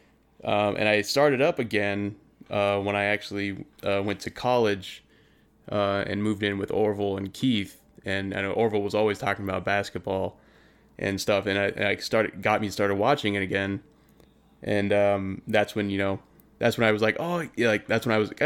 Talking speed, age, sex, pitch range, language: 200 wpm, 20-39, male, 100-115 Hz, English